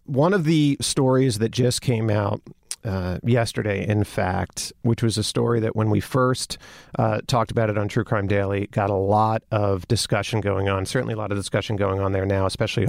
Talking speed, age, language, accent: 210 wpm, 40-59, English, American